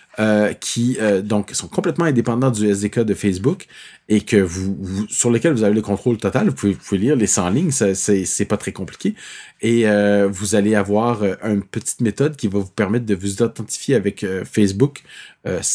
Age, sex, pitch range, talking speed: 30-49, male, 100-120 Hz, 195 wpm